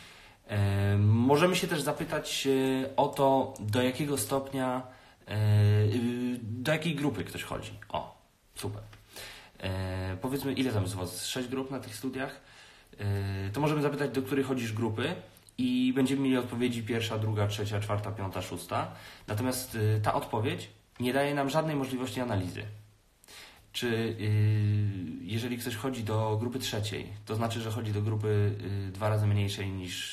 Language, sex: Polish, male